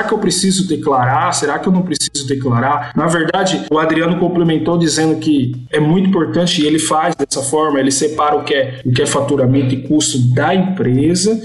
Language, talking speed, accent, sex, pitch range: Portuguese, 200 wpm, Brazilian, male, 145-185 Hz